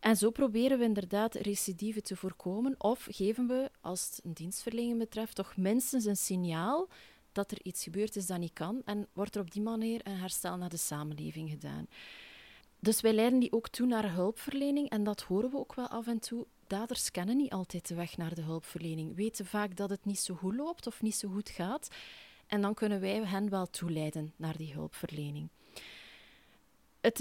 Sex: female